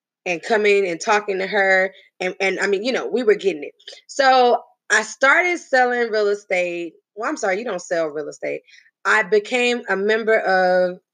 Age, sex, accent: 20-39, female, American